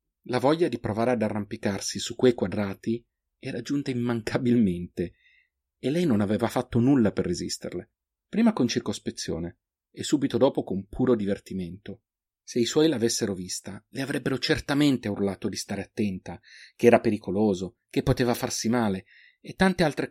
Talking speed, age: 150 wpm, 40-59